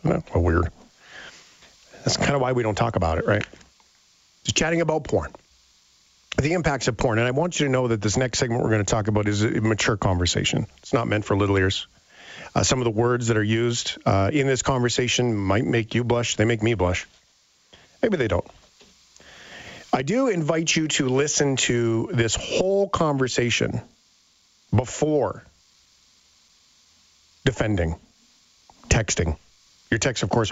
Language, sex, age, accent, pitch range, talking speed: English, male, 50-69, American, 105-135 Hz, 170 wpm